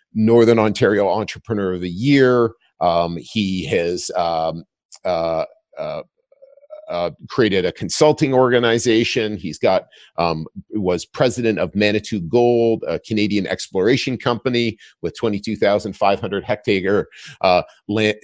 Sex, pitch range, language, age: male, 100-125 Hz, English, 40-59